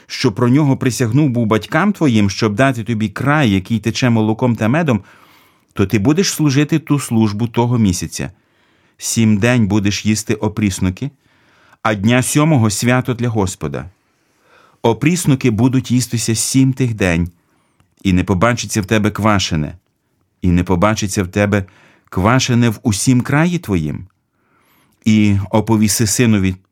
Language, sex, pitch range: Ukrainian, male, 100-125 Hz